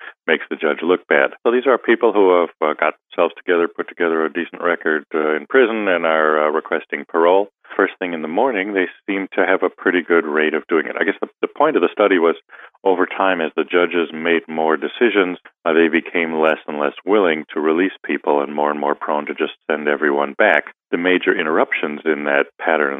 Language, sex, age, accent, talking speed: English, male, 40-59, American, 225 wpm